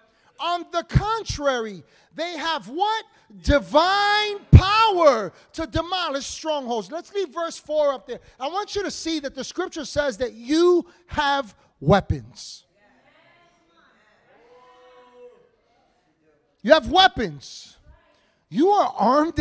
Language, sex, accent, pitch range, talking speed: English, male, American, 240-340 Hz, 110 wpm